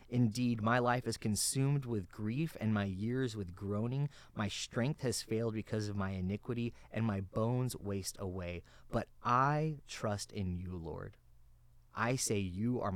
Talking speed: 160 wpm